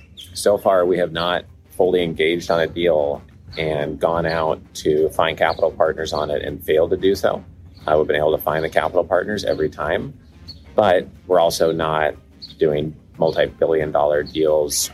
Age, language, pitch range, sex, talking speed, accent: 30-49, English, 80-95 Hz, male, 180 wpm, American